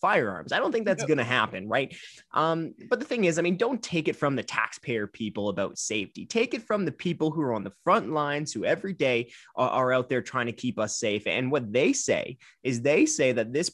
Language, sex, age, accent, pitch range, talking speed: English, male, 20-39, American, 115-150 Hz, 250 wpm